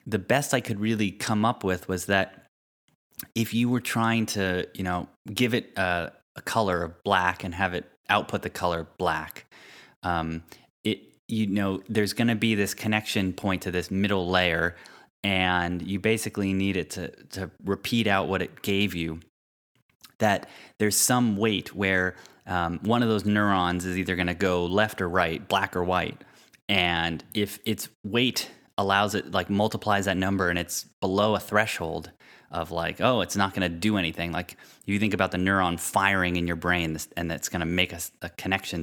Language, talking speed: English, 190 wpm